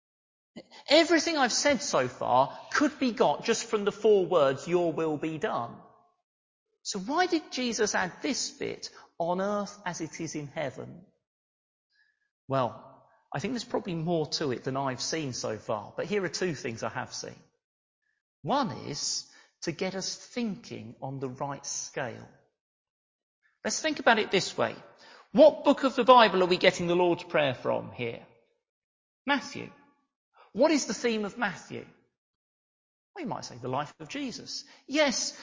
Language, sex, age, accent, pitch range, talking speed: English, male, 40-59, British, 160-265 Hz, 165 wpm